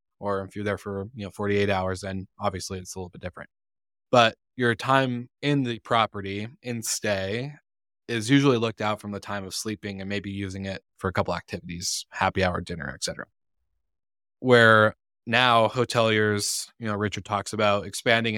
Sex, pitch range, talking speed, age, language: male, 95-110 Hz, 180 wpm, 20-39, English